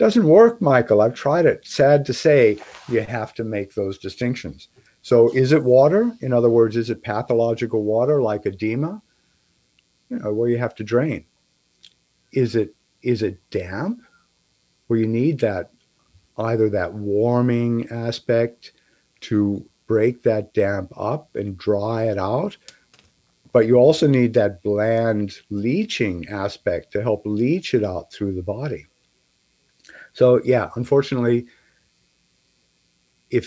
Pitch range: 105-130 Hz